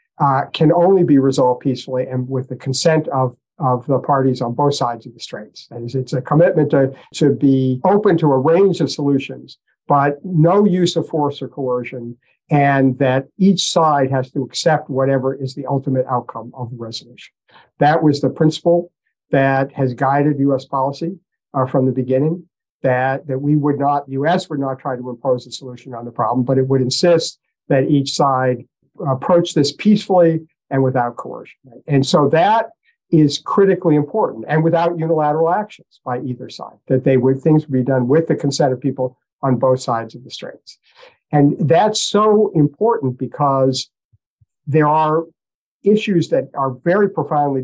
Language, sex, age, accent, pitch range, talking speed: English, male, 50-69, American, 130-160 Hz, 175 wpm